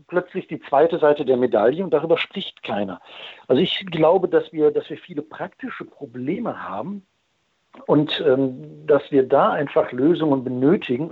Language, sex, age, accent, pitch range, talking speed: German, male, 60-79, German, 130-155 Hz, 150 wpm